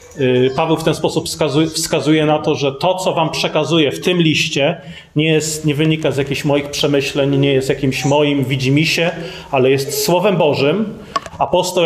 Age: 30-49